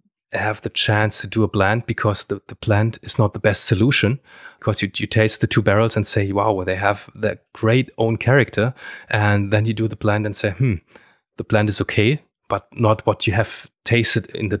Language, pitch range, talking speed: English, 95-110 Hz, 220 wpm